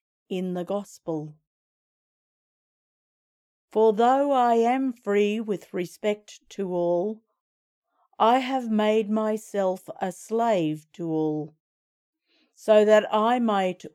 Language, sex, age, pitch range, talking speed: English, female, 50-69, 175-220 Hz, 105 wpm